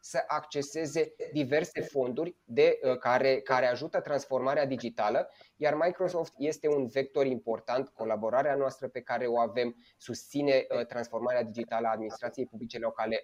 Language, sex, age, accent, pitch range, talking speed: Romanian, male, 20-39, native, 120-150 Hz, 140 wpm